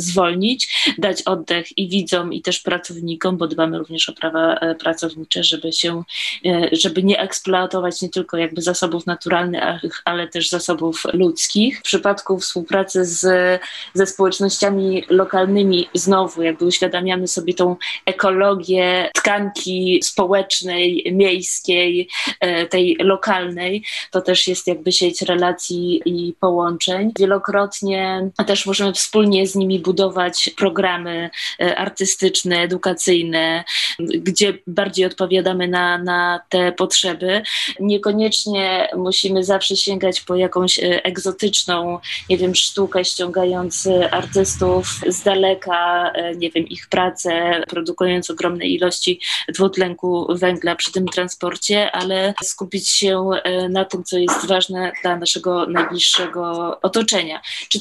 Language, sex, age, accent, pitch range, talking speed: Polish, female, 20-39, native, 175-195 Hz, 115 wpm